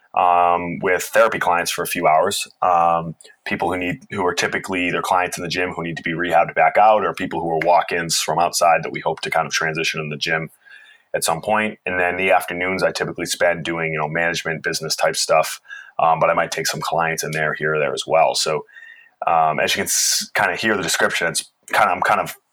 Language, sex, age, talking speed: English, male, 20-39, 240 wpm